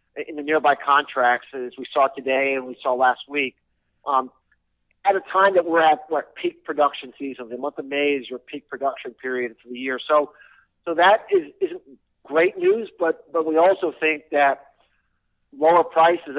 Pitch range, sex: 140-165 Hz, male